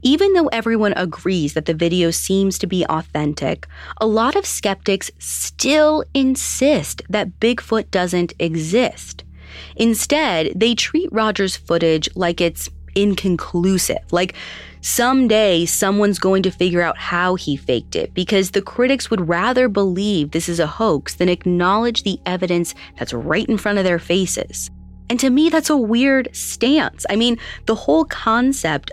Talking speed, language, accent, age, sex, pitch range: 150 wpm, English, American, 20-39, female, 165-230 Hz